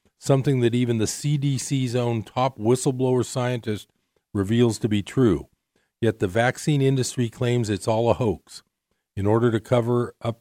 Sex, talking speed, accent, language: male, 155 wpm, American, English